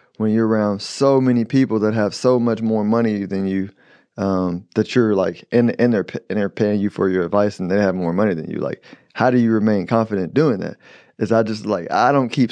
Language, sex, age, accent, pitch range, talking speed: English, male, 20-39, American, 100-125 Hz, 240 wpm